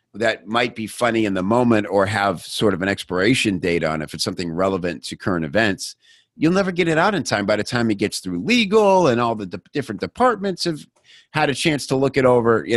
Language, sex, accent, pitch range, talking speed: English, male, American, 95-120 Hz, 235 wpm